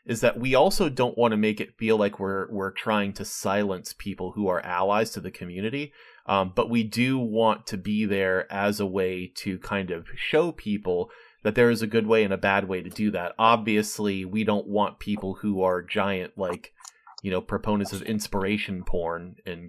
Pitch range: 95-120 Hz